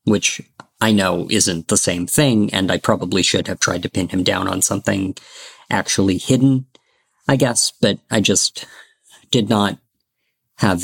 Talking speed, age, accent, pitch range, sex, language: 160 wpm, 40-59, American, 100-120 Hz, male, English